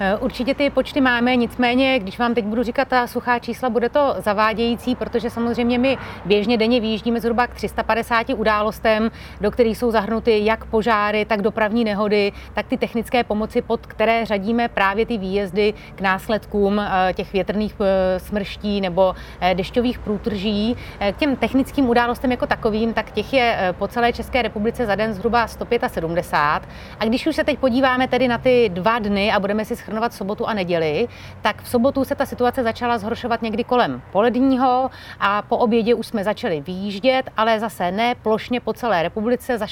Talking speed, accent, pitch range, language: 170 wpm, native, 210-245 Hz, Czech